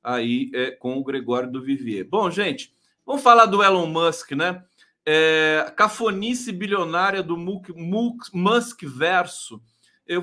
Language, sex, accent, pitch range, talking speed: Portuguese, male, Brazilian, 135-180 Hz, 130 wpm